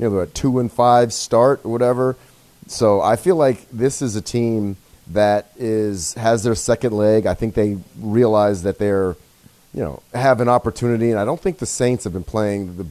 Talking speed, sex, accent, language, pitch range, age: 200 wpm, male, American, English, 95-115 Hz, 30-49